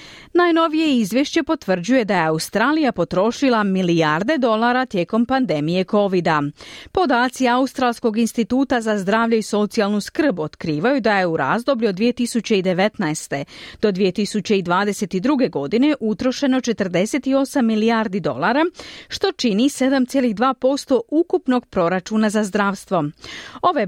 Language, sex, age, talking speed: Croatian, female, 40-59, 105 wpm